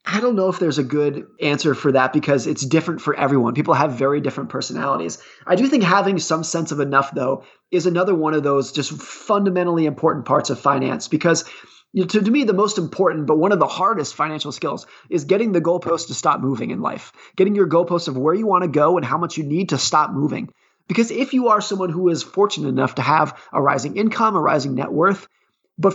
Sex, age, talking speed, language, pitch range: male, 30-49, 230 wpm, English, 155-195 Hz